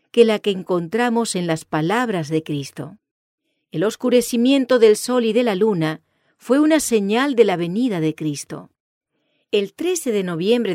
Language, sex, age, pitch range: English, female, 40-59, 165-240 Hz